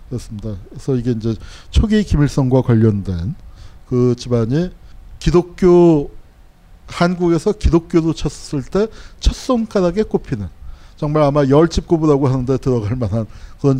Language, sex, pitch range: Korean, male, 105-155 Hz